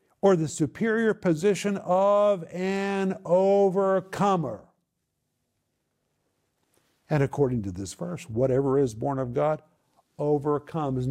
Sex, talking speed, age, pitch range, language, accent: male, 95 wpm, 50-69, 120-170 Hz, English, American